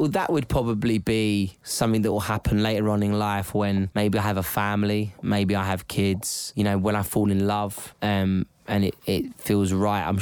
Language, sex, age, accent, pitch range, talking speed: German, male, 20-39, British, 100-125 Hz, 215 wpm